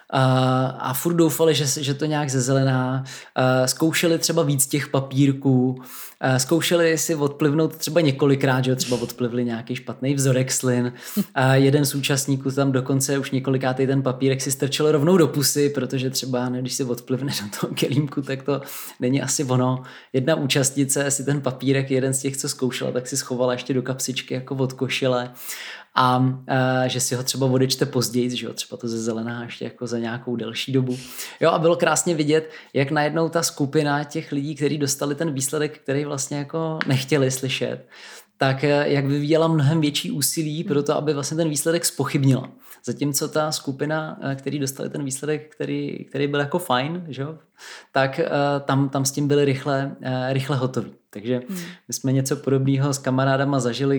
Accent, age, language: native, 20-39, Czech